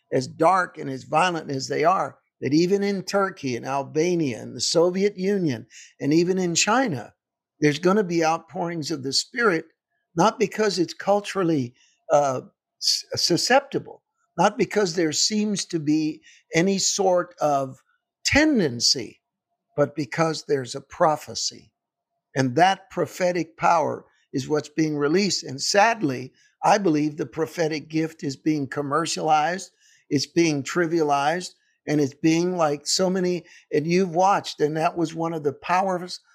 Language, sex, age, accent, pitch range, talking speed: English, male, 60-79, American, 150-190 Hz, 145 wpm